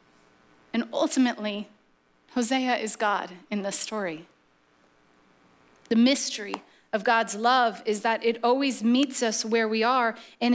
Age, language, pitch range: 30-49, English, 205-265 Hz